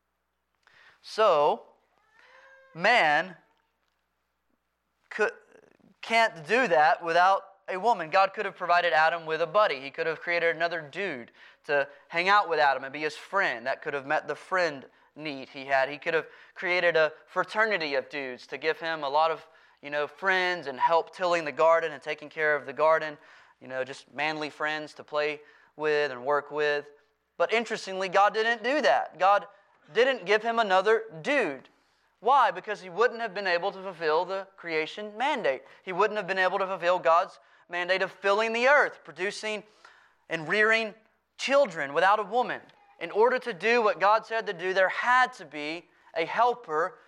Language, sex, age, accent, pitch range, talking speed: English, male, 20-39, American, 155-215 Hz, 175 wpm